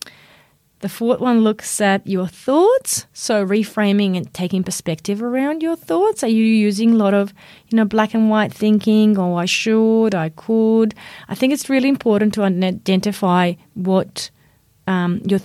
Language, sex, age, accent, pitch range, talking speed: English, female, 30-49, Australian, 180-225 Hz, 165 wpm